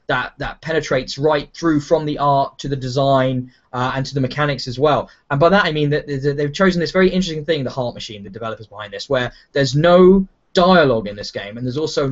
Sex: male